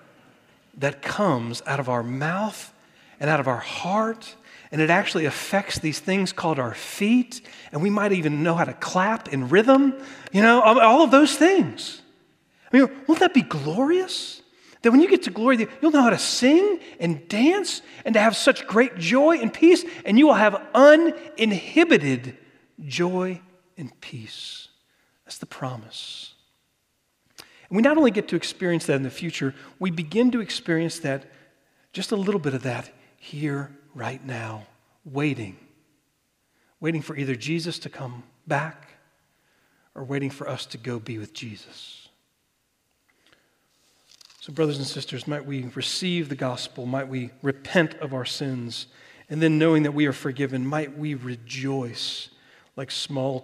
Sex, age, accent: male, 40-59, American